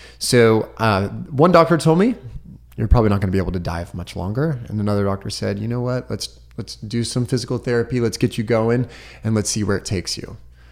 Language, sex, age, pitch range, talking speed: English, male, 30-49, 95-120 Hz, 230 wpm